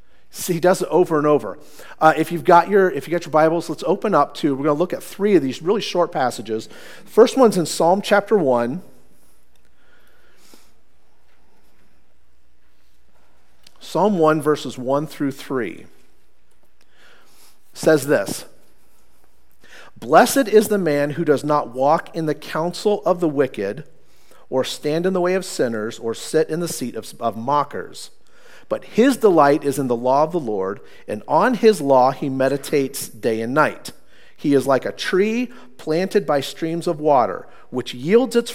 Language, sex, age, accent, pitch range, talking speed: English, male, 40-59, American, 130-190 Hz, 160 wpm